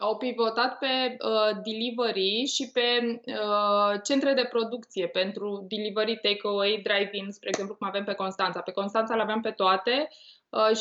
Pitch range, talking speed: 195-230 Hz, 155 wpm